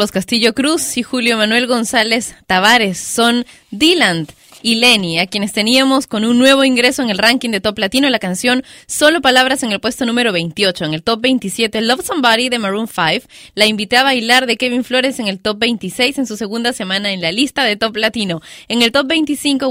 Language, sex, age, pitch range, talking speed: Spanish, female, 20-39, 195-250 Hz, 205 wpm